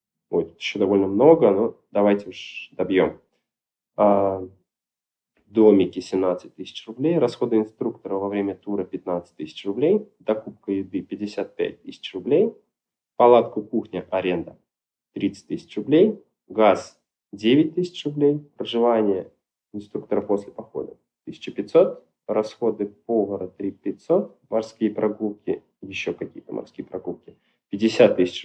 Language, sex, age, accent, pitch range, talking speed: Russian, male, 20-39, native, 100-120 Hz, 110 wpm